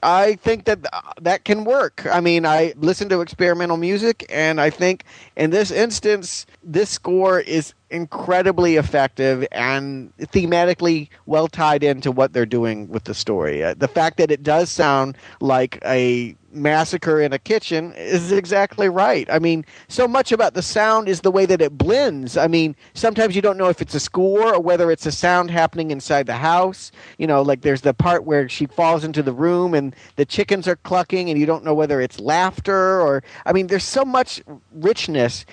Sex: male